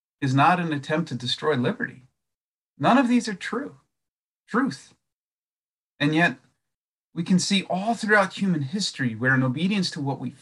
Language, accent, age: English, American, 40-59